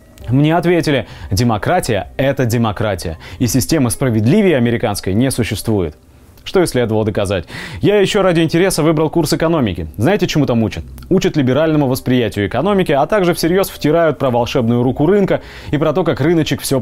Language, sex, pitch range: Russian, male, 120-165 Hz